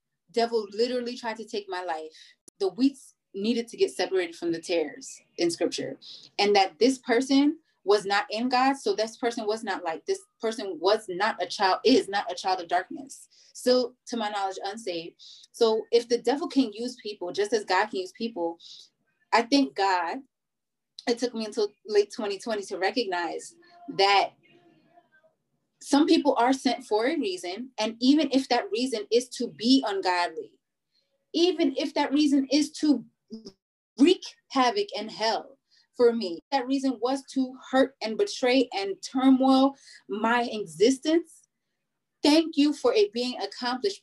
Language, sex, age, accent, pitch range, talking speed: English, female, 20-39, American, 210-290 Hz, 160 wpm